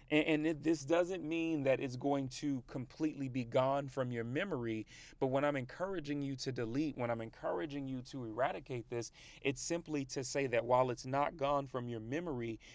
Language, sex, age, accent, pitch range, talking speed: English, male, 30-49, American, 130-150 Hz, 190 wpm